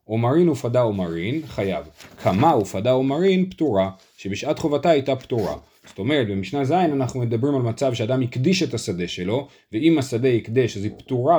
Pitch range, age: 110-145 Hz, 30-49